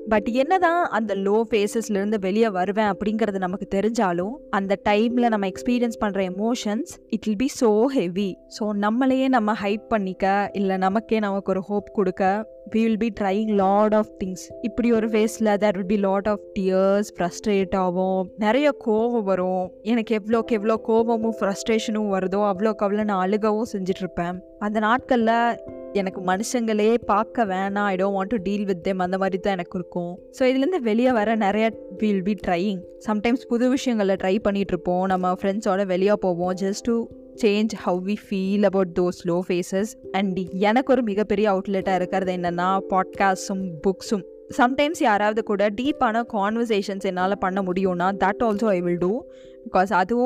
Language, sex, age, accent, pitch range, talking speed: Tamil, female, 20-39, native, 190-225 Hz, 160 wpm